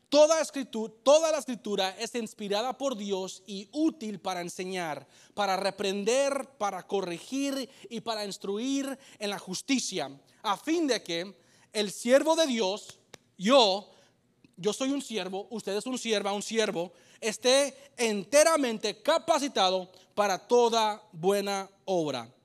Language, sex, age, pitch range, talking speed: English, male, 30-49, 170-260 Hz, 130 wpm